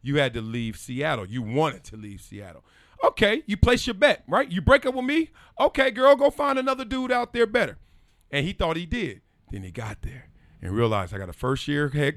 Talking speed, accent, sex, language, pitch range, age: 230 wpm, American, male, English, 120-200 Hz, 40-59